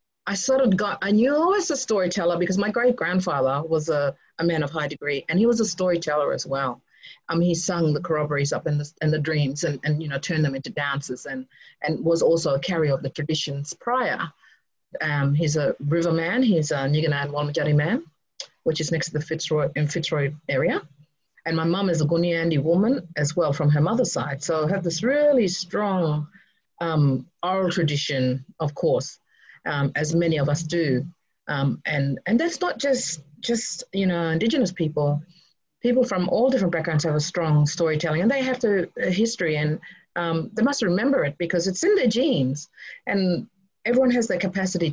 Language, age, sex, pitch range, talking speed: English, 40-59, female, 150-190 Hz, 195 wpm